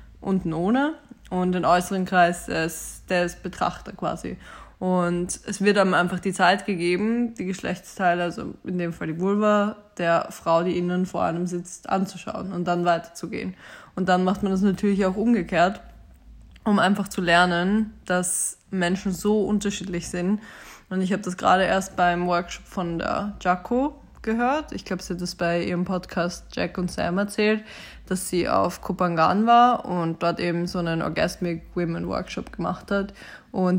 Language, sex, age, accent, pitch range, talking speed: German, female, 20-39, German, 175-200 Hz, 170 wpm